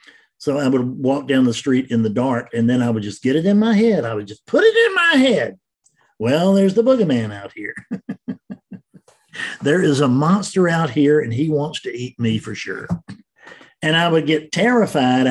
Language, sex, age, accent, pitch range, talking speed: English, male, 50-69, American, 125-195 Hz, 210 wpm